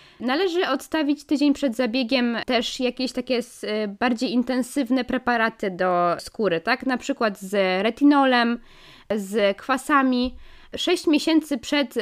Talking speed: 115 wpm